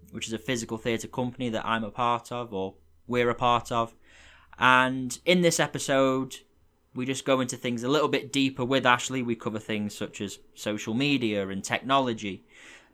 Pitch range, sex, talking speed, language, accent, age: 110-135 Hz, male, 190 wpm, English, British, 10-29